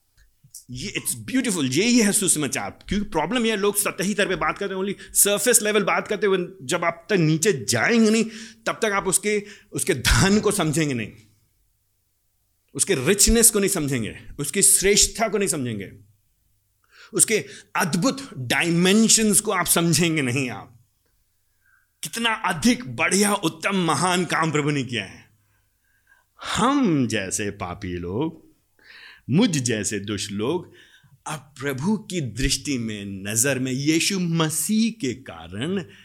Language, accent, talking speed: Hindi, native, 130 wpm